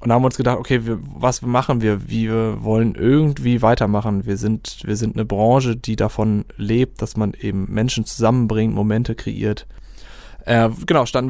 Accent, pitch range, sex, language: German, 100-115 Hz, male, German